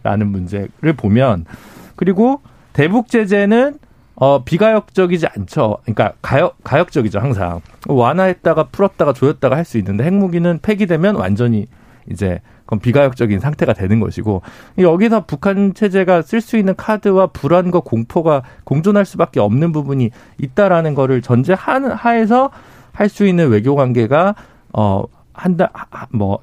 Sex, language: male, Korean